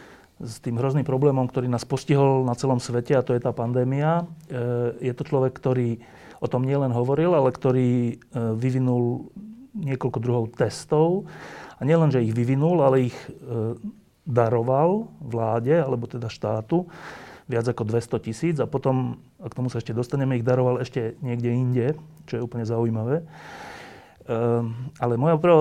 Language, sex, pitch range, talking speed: Slovak, male, 120-145 Hz, 150 wpm